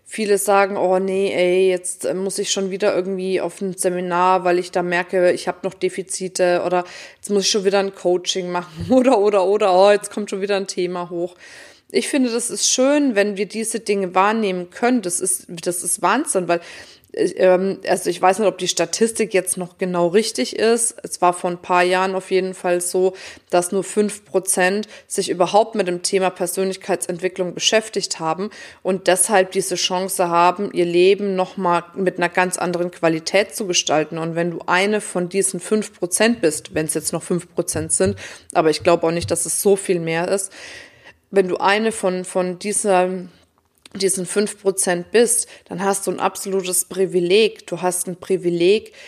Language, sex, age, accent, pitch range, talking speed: German, female, 20-39, German, 180-200 Hz, 185 wpm